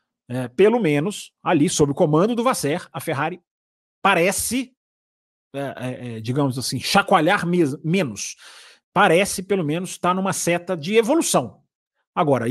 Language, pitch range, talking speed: Portuguese, 140-190 Hz, 115 wpm